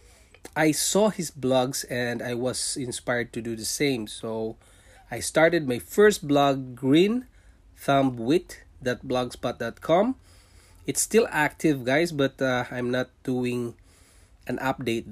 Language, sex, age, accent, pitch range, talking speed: English, male, 20-39, Filipino, 100-140 Hz, 125 wpm